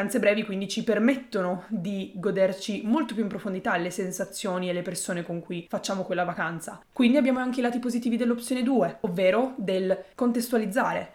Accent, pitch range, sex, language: native, 185-235 Hz, female, Italian